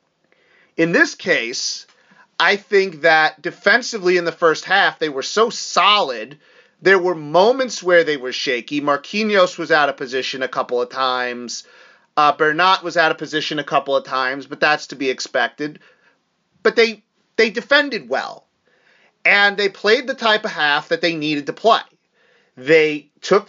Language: English